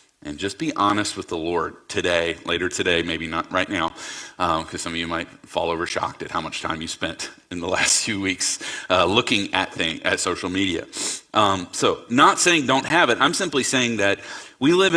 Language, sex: English, male